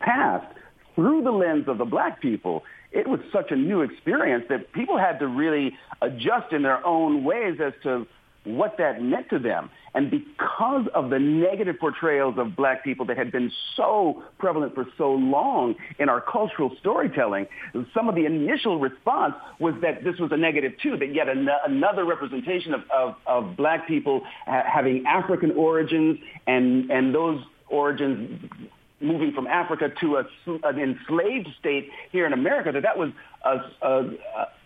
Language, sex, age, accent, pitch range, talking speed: English, male, 50-69, American, 130-180 Hz, 170 wpm